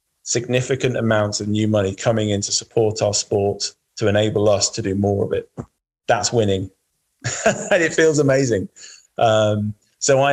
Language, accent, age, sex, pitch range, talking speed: English, British, 20-39, male, 100-120 Hz, 165 wpm